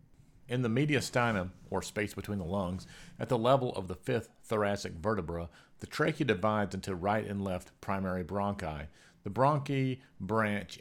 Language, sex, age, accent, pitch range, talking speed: English, male, 40-59, American, 95-120 Hz, 155 wpm